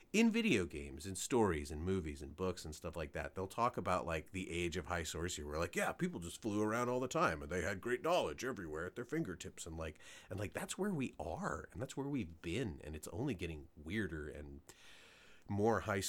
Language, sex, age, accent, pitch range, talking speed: English, male, 30-49, American, 80-115 Hz, 230 wpm